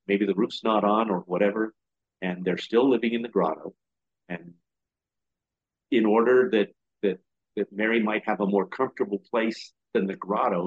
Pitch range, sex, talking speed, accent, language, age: 95-110 Hz, male, 170 wpm, American, English, 50-69